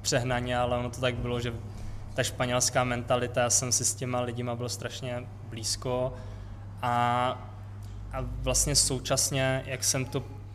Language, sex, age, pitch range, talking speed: Czech, male, 20-39, 110-130 Hz, 150 wpm